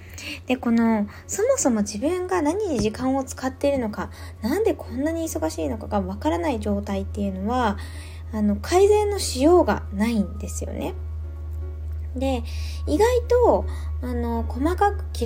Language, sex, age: Japanese, female, 20-39